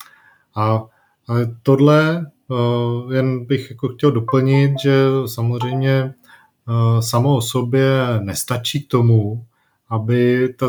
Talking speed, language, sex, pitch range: 85 wpm, Czech, male, 115-125 Hz